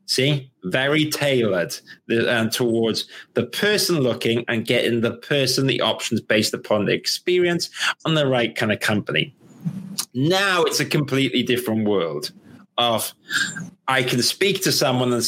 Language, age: English, 30-49